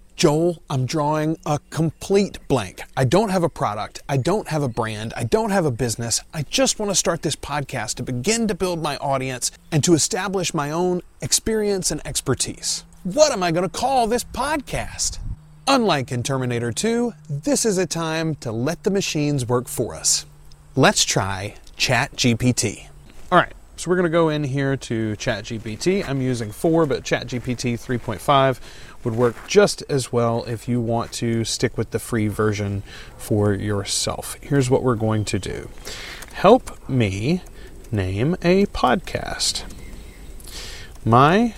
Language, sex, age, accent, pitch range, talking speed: English, male, 30-49, American, 110-165 Hz, 160 wpm